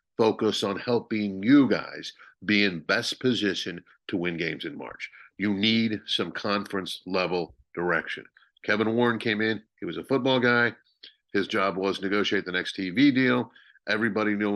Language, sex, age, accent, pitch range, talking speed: English, male, 50-69, American, 95-120 Hz, 160 wpm